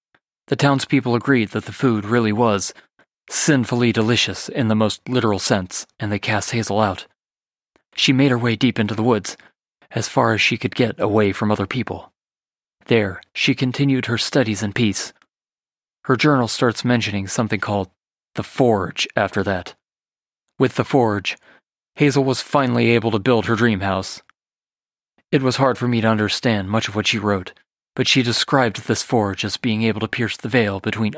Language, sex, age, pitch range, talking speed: English, male, 30-49, 105-125 Hz, 175 wpm